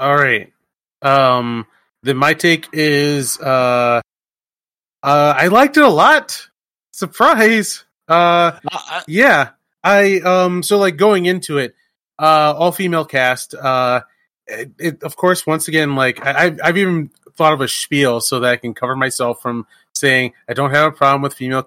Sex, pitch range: male, 125-165 Hz